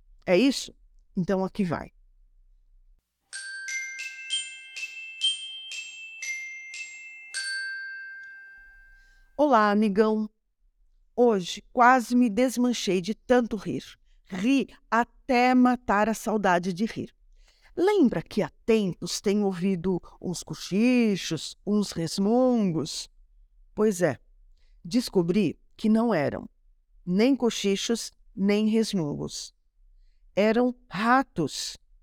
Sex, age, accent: female, 50-69, Brazilian